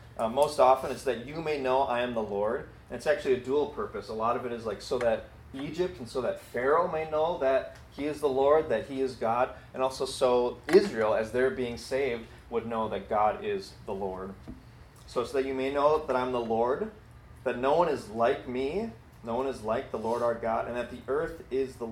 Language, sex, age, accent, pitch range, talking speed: English, male, 30-49, American, 115-140 Hz, 240 wpm